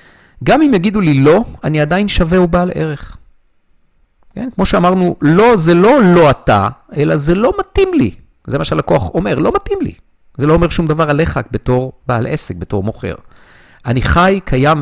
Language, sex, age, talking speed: Hebrew, male, 50-69, 180 wpm